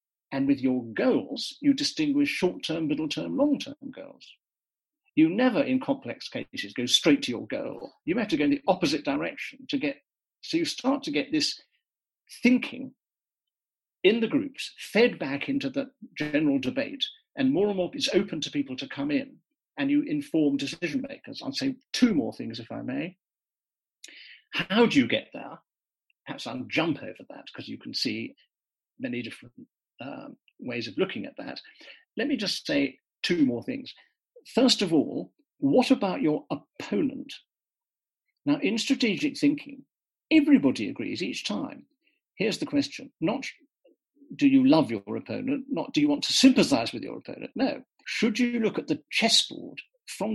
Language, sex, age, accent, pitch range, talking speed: English, male, 50-69, British, 235-285 Hz, 165 wpm